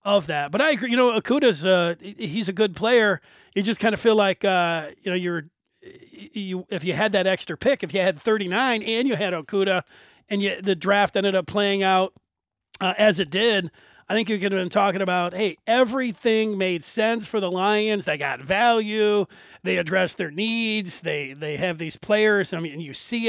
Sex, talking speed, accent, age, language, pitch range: male, 205 wpm, American, 40-59, English, 175-220 Hz